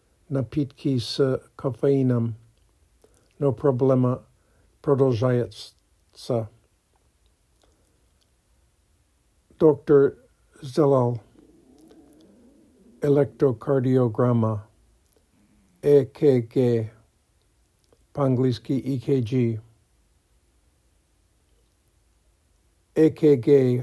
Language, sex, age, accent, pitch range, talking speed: Russian, male, 60-79, American, 110-140 Hz, 35 wpm